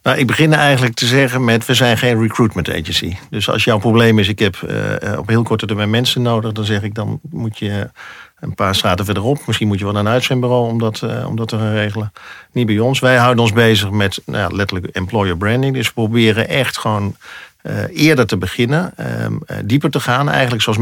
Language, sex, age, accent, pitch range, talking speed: Dutch, male, 50-69, Dutch, 100-125 Hz, 220 wpm